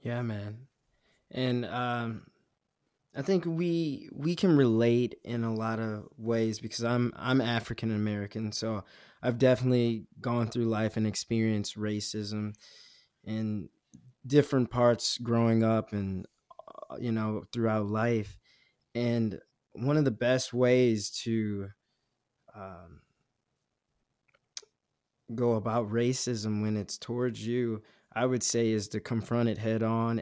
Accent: American